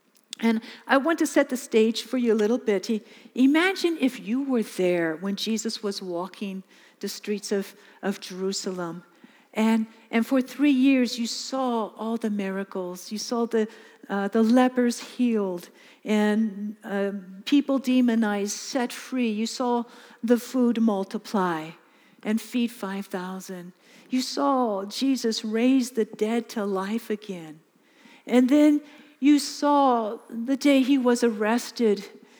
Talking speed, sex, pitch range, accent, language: 135 wpm, female, 210-255 Hz, American, English